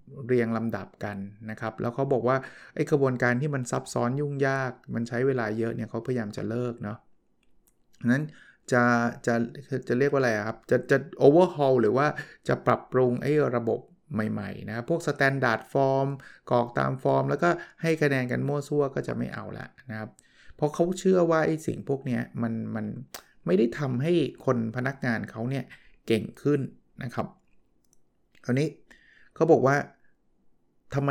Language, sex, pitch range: Thai, male, 110-135 Hz